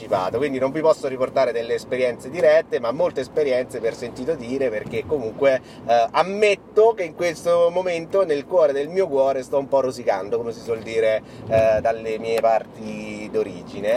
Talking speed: 170 wpm